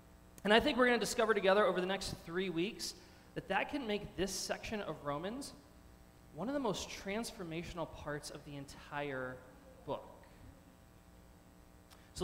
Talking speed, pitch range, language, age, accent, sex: 155 wpm, 140-200 Hz, English, 20-39, American, male